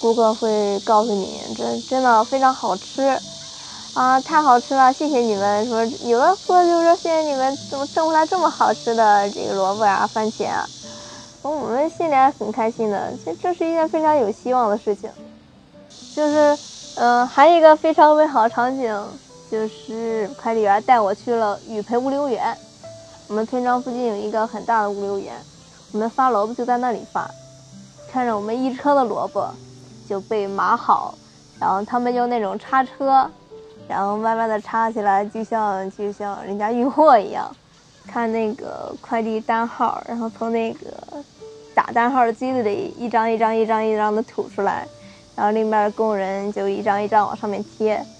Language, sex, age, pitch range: Chinese, female, 20-39, 205-260 Hz